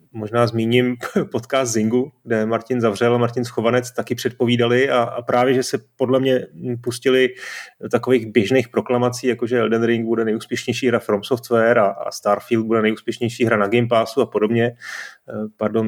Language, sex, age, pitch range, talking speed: Czech, male, 30-49, 115-135 Hz, 160 wpm